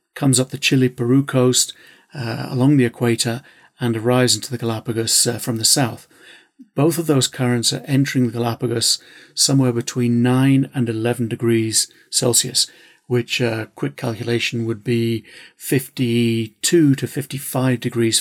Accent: British